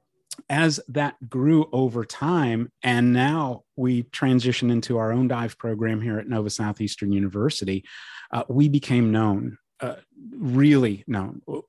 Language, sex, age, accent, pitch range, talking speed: English, male, 30-49, American, 105-140 Hz, 135 wpm